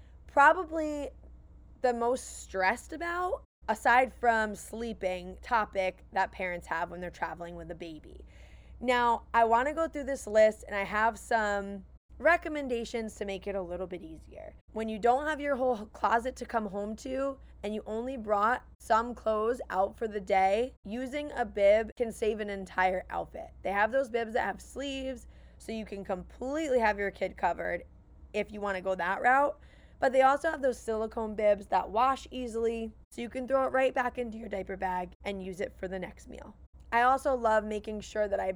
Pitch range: 200-255 Hz